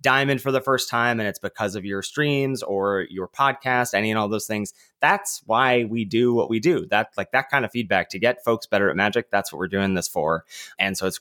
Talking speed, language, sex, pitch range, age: 250 wpm, English, male, 100-140 Hz, 20-39